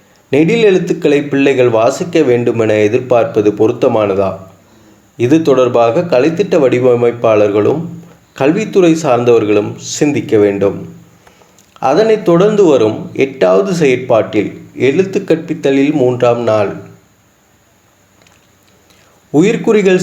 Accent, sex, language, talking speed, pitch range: native, male, Tamil, 70 wpm, 110-160 Hz